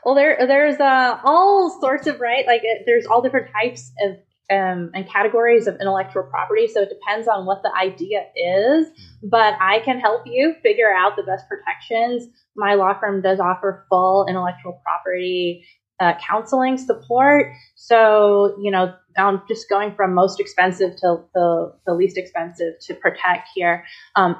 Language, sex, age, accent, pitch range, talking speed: English, female, 20-39, American, 180-225 Hz, 165 wpm